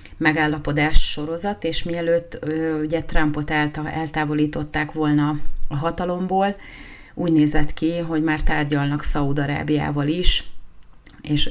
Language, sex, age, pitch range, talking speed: Hungarian, female, 30-49, 145-160 Hz, 110 wpm